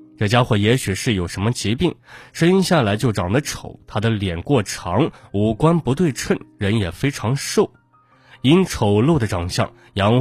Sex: male